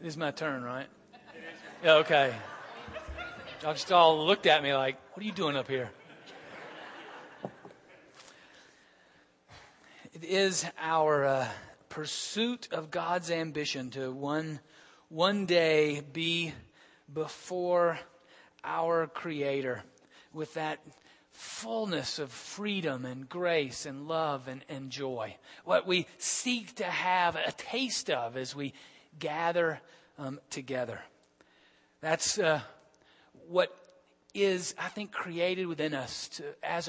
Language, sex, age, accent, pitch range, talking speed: English, male, 40-59, American, 135-170 Hz, 115 wpm